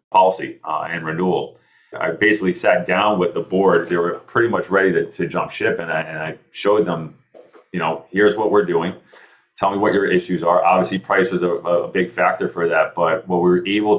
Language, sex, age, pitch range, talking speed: English, male, 30-49, 85-95 Hz, 225 wpm